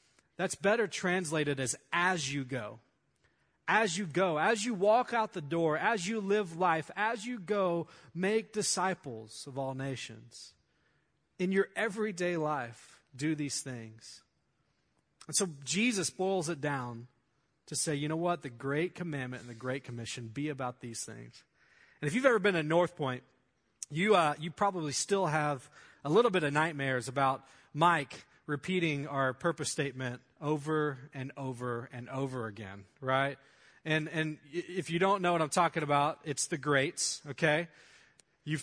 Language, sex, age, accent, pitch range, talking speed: English, male, 30-49, American, 140-185 Hz, 160 wpm